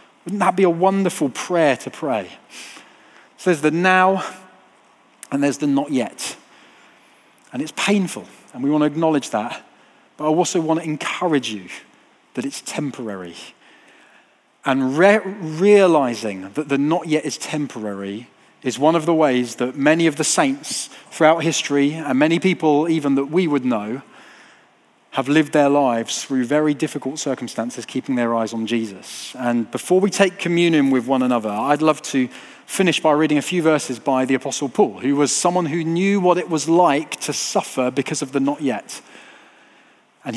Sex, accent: male, British